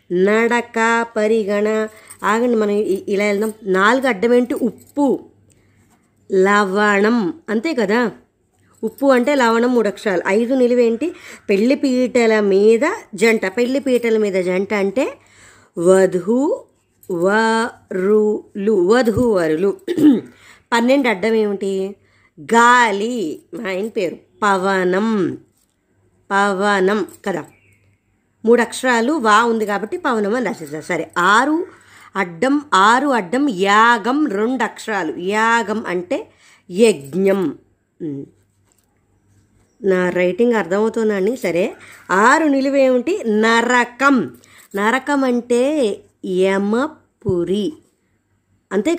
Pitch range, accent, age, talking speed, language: 195-255 Hz, native, 20-39, 85 wpm, Telugu